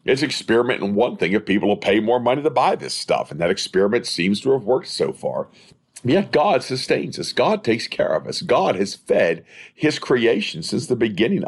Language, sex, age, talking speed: English, male, 50-69, 215 wpm